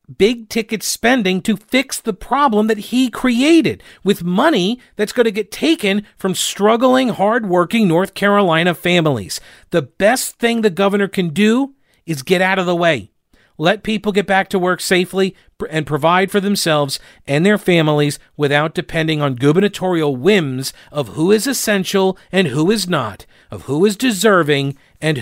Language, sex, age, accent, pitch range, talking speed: English, male, 40-59, American, 140-200 Hz, 160 wpm